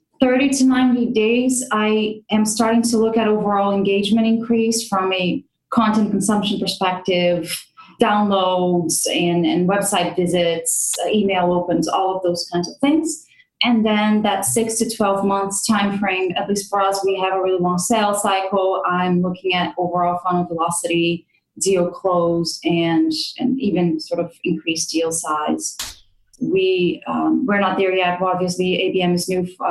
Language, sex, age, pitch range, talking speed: English, female, 30-49, 180-220 Hz, 160 wpm